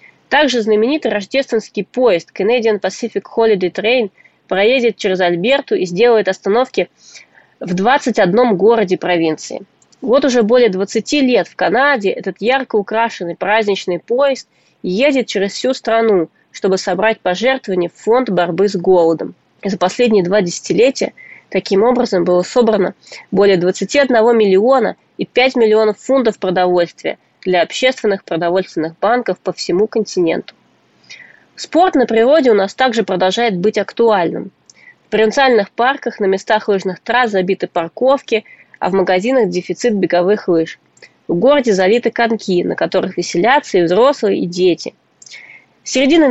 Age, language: 20-39, Russian